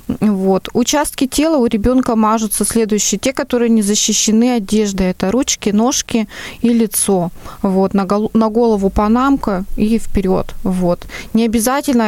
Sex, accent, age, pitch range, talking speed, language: female, native, 20-39, 195-225 Hz, 130 wpm, Russian